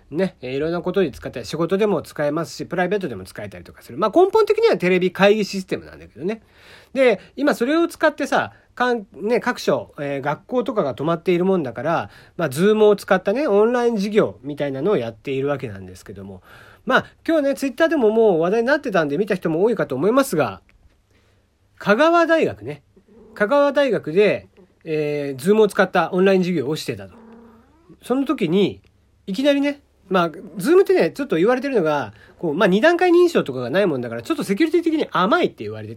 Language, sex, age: Japanese, male, 40-59